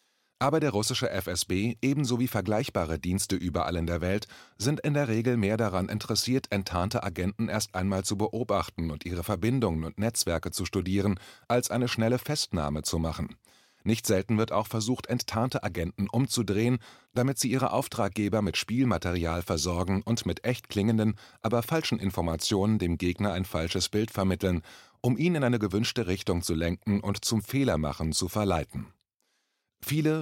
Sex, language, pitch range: male, German, 90-120 Hz